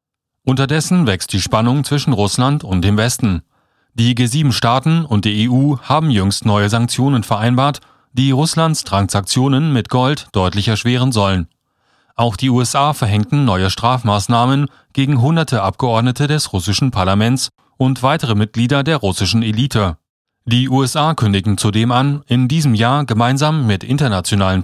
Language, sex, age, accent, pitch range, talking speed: German, male, 40-59, German, 105-140 Hz, 135 wpm